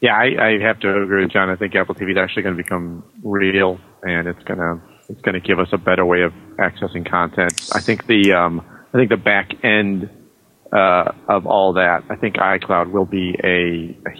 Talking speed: 215 wpm